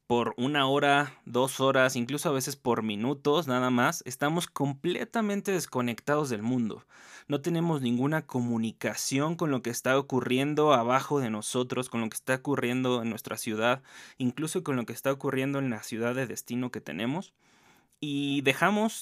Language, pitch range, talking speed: Spanish, 120-145 Hz, 165 wpm